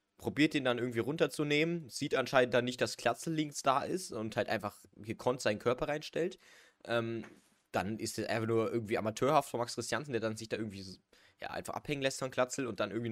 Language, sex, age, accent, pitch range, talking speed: German, male, 20-39, German, 100-125 Hz, 215 wpm